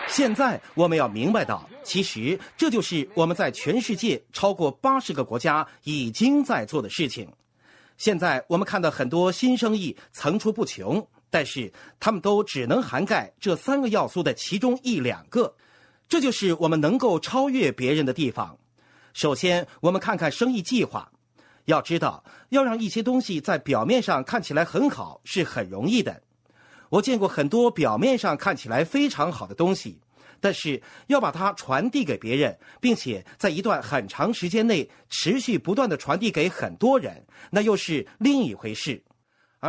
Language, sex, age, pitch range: Chinese, male, 50-69, 165-250 Hz